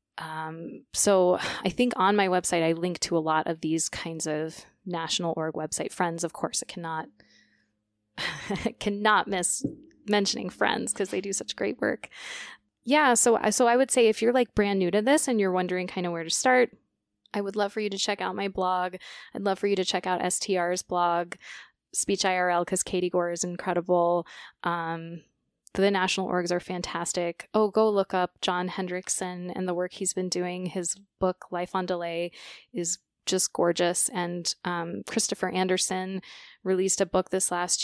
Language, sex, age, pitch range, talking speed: English, female, 20-39, 175-195 Hz, 185 wpm